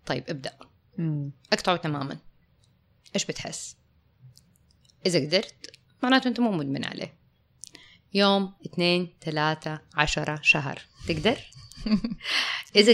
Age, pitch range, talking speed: 20-39, 150-190 Hz, 95 wpm